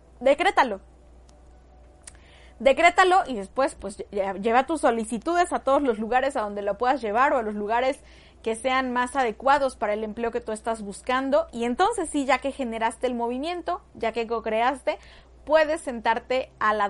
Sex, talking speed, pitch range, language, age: female, 170 wpm, 220-275 Hz, Spanish, 30-49